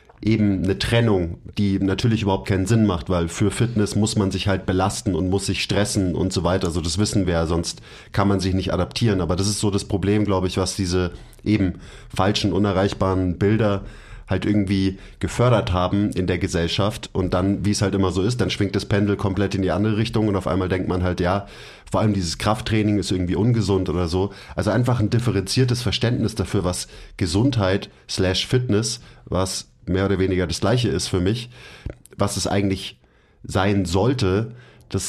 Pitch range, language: 90-105 Hz, German